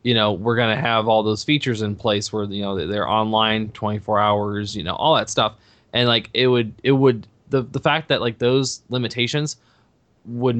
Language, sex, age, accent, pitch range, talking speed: English, male, 20-39, American, 105-120 Hz, 210 wpm